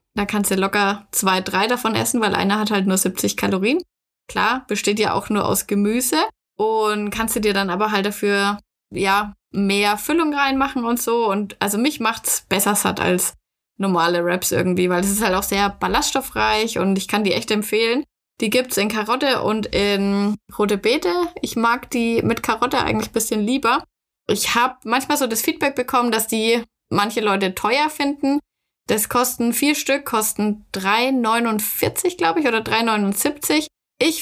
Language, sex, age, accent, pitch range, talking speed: German, female, 10-29, German, 200-250 Hz, 175 wpm